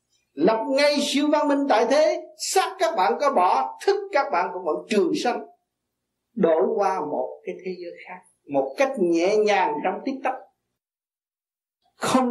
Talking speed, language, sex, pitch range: 165 wpm, Vietnamese, male, 190-295 Hz